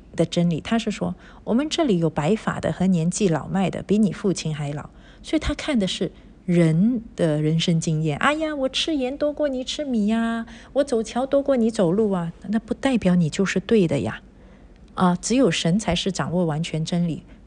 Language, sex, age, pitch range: Chinese, female, 50-69, 165-220 Hz